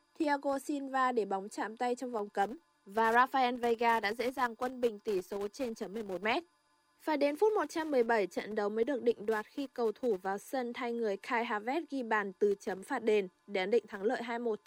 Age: 20-39